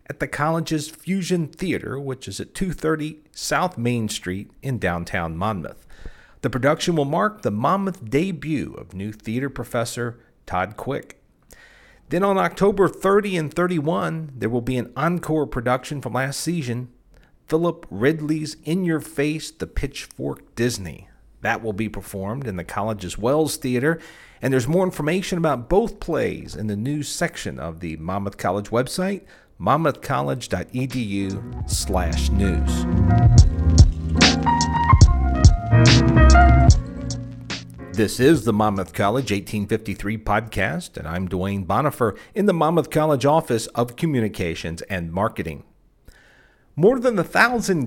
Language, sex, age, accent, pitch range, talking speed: English, male, 50-69, American, 100-155 Hz, 130 wpm